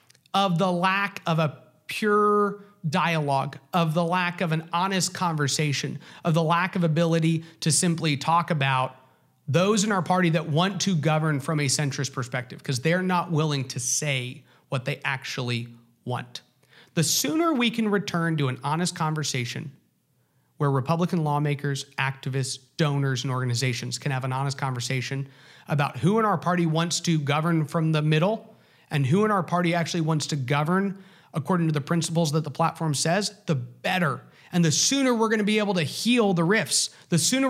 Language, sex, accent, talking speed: English, male, American, 175 wpm